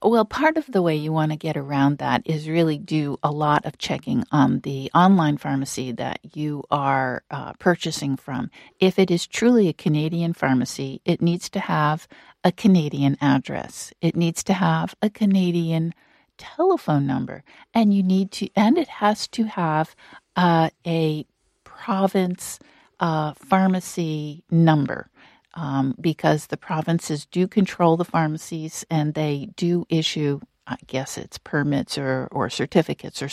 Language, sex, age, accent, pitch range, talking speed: English, female, 50-69, American, 145-190 Hz, 155 wpm